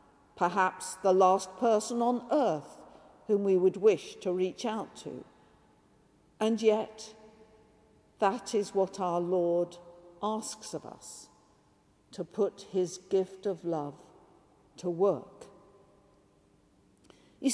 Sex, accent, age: female, British, 50-69